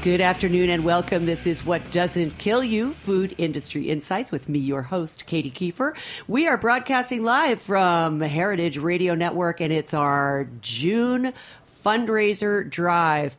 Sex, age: female, 40-59